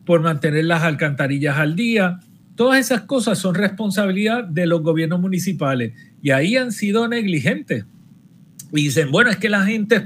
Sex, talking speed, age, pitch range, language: male, 165 wpm, 50-69, 150-195 Hz, Spanish